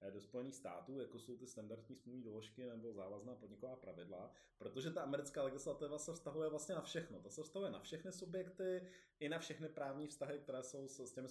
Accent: native